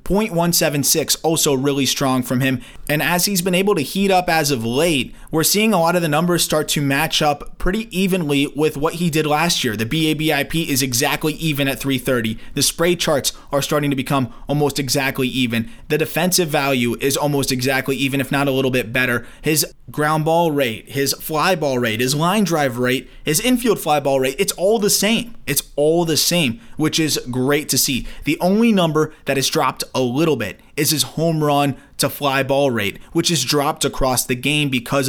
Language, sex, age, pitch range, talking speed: English, male, 20-39, 130-155 Hz, 205 wpm